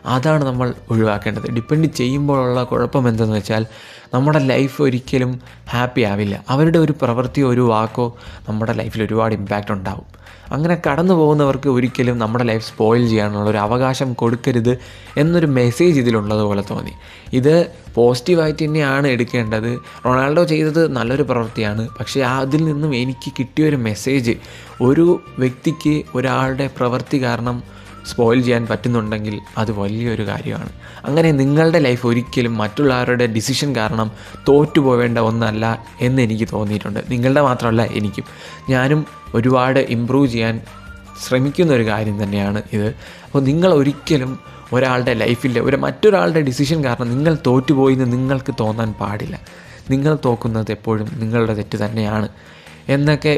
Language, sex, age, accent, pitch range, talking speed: Malayalam, male, 20-39, native, 110-140 Hz, 120 wpm